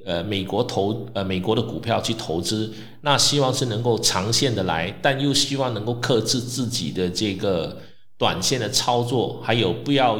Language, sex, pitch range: Chinese, male, 110-135 Hz